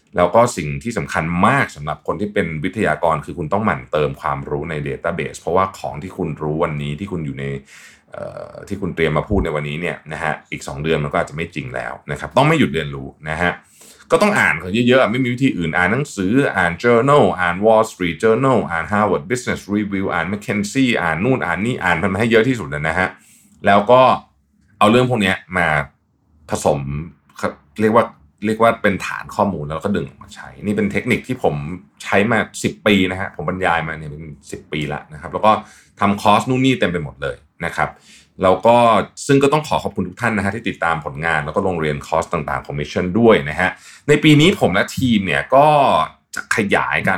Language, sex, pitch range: Thai, male, 80-110 Hz